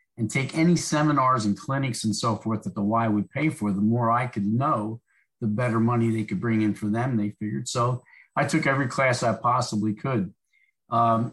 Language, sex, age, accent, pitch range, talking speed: English, male, 50-69, American, 105-130 Hz, 210 wpm